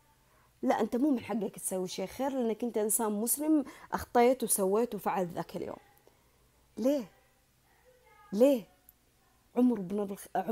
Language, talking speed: Arabic, 120 wpm